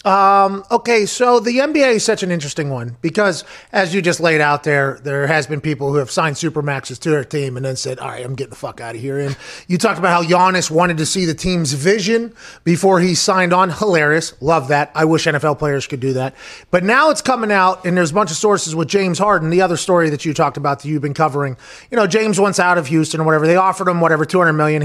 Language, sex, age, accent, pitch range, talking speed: English, male, 30-49, American, 165-220 Hz, 255 wpm